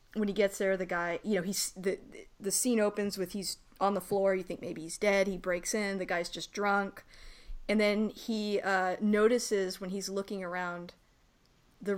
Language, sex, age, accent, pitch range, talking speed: English, female, 30-49, American, 185-215 Hz, 205 wpm